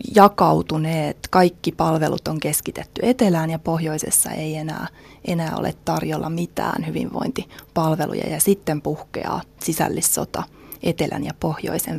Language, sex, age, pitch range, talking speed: Finnish, female, 20-39, 160-190 Hz, 110 wpm